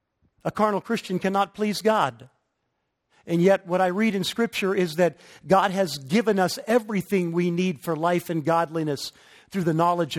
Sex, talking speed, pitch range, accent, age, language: male, 170 wpm, 175-245 Hz, American, 50-69, English